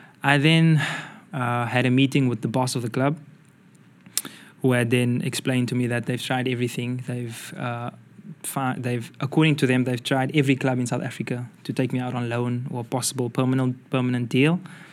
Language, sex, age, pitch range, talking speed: Finnish, male, 20-39, 120-135 Hz, 190 wpm